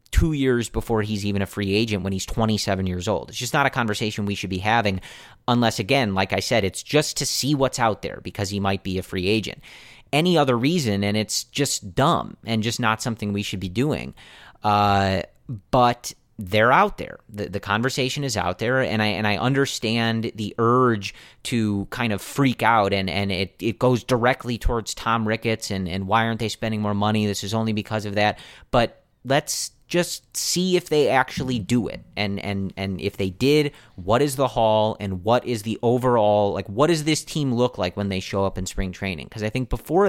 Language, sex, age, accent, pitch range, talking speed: English, male, 30-49, American, 100-125 Hz, 215 wpm